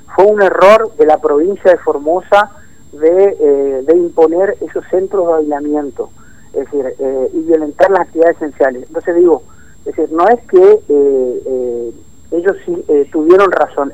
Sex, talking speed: male, 160 wpm